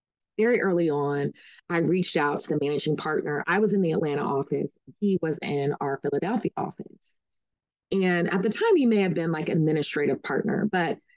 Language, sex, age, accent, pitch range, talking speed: English, female, 20-39, American, 160-210 Hz, 185 wpm